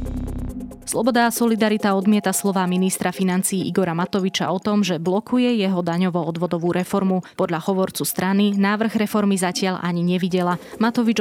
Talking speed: 135 wpm